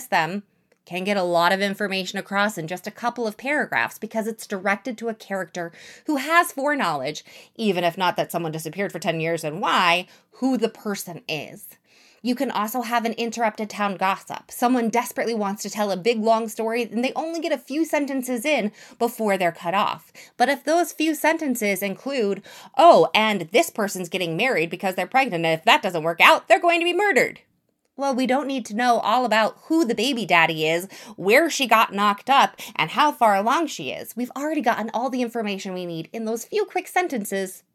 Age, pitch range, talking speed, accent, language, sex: 20-39, 190-260 Hz, 205 wpm, American, English, female